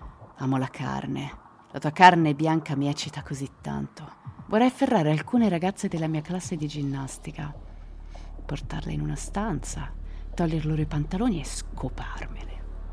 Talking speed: 140 wpm